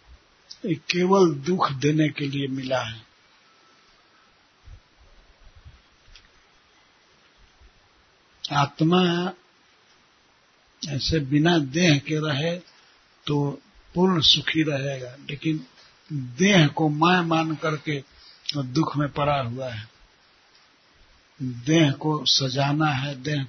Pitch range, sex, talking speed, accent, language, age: 135-160 Hz, male, 85 wpm, native, Hindi, 60-79